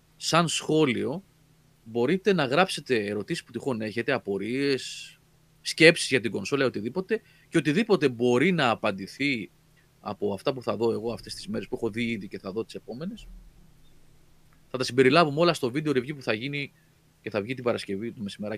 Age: 30-49